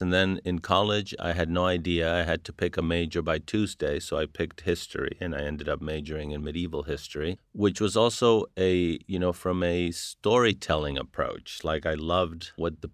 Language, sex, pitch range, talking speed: English, male, 80-90 Hz, 200 wpm